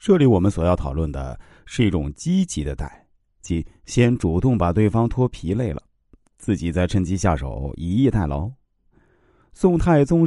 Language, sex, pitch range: Chinese, male, 85-120 Hz